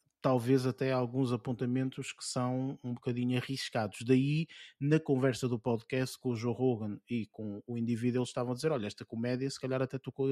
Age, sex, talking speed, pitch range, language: 20-39, male, 190 wpm, 120-145 Hz, Portuguese